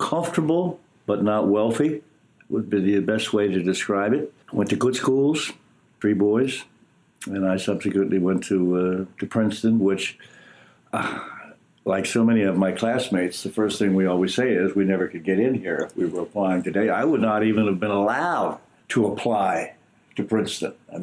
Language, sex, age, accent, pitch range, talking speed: English, male, 60-79, American, 95-110 Hz, 185 wpm